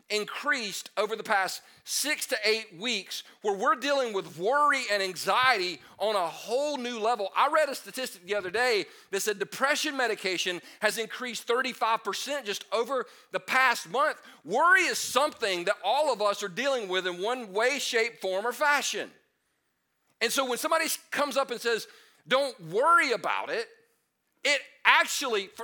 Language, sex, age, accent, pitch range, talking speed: English, male, 40-59, American, 200-280 Hz, 165 wpm